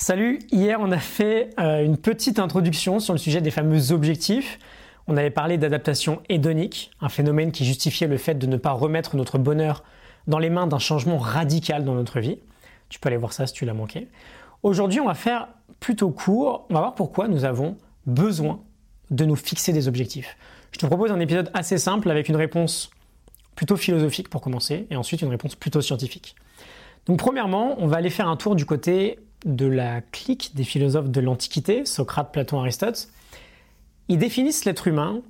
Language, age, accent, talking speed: French, 20-39, French, 190 wpm